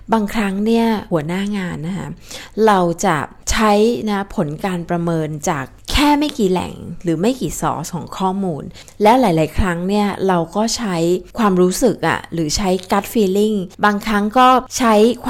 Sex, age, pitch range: female, 20-39, 170-220 Hz